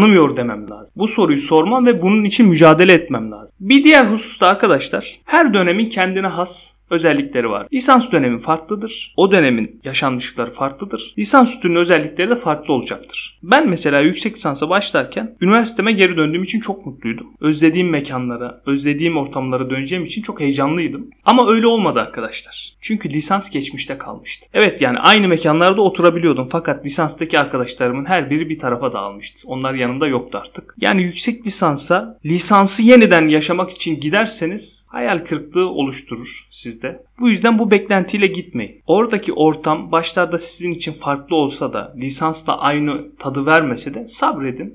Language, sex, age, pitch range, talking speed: Turkish, male, 30-49, 145-210 Hz, 145 wpm